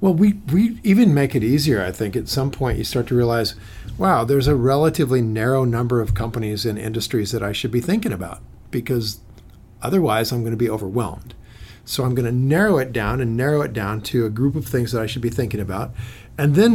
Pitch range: 110-145 Hz